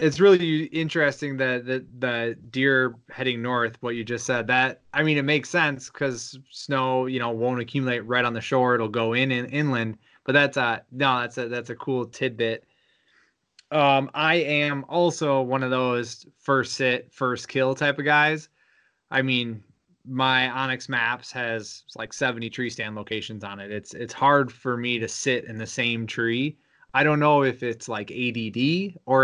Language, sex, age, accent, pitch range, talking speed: English, male, 20-39, American, 120-140 Hz, 185 wpm